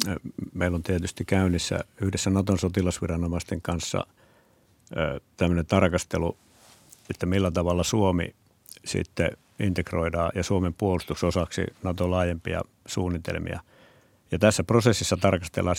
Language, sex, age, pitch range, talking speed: Finnish, male, 60-79, 90-100 Hz, 100 wpm